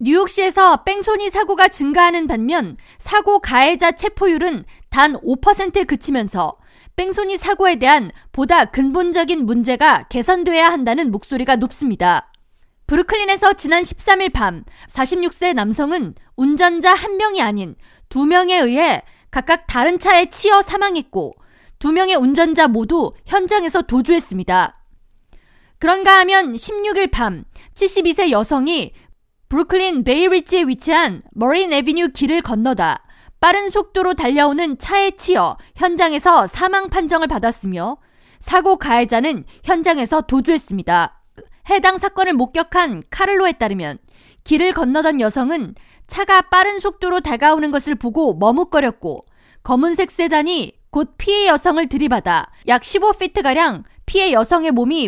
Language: Korean